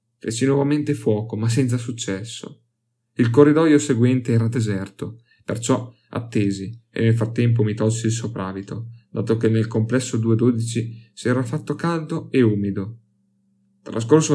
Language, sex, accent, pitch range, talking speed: Italian, male, native, 110-125 Hz, 135 wpm